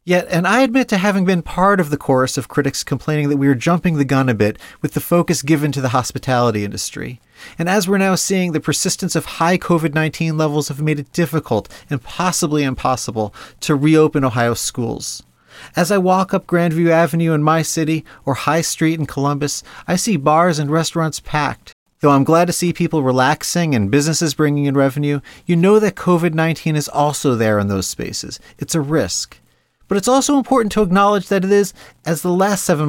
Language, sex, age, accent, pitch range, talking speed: English, male, 40-59, American, 130-175 Hz, 200 wpm